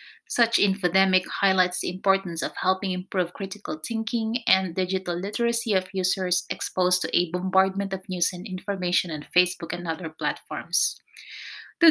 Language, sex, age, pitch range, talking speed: Filipino, female, 30-49, 185-215 Hz, 145 wpm